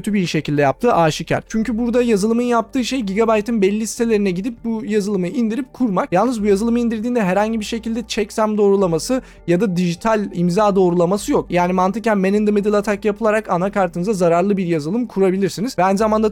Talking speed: 180 wpm